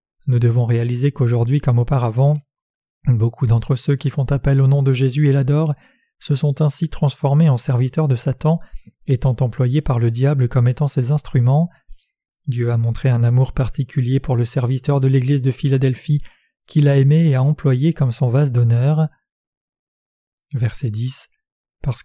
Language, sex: French, male